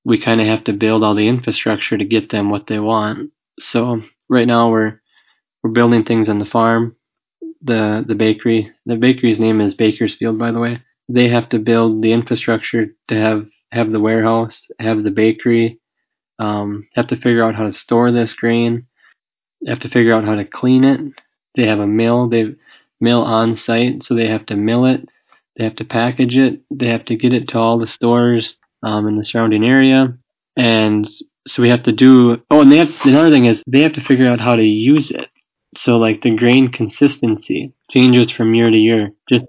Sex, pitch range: male, 110-125 Hz